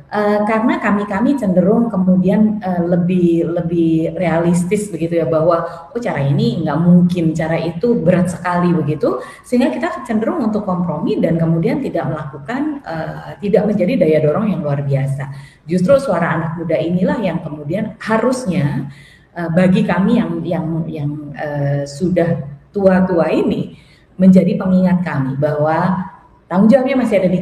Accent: native